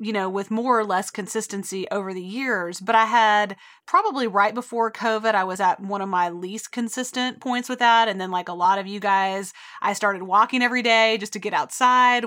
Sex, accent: female, American